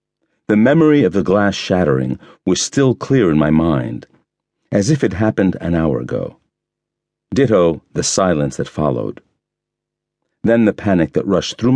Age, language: 50-69, English